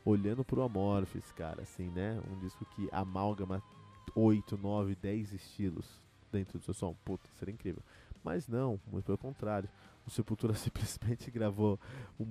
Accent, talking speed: Brazilian, 145 wpm